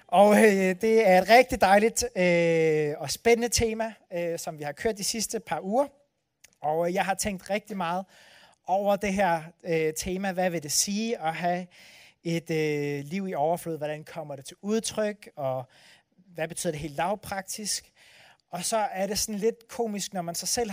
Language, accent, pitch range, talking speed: Danish, native, 165-210 Hz, 185 wpm